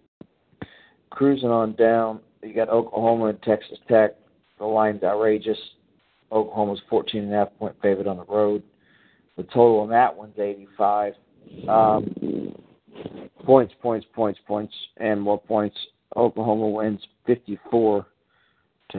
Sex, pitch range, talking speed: male, 105-115 Hz, 115 wpm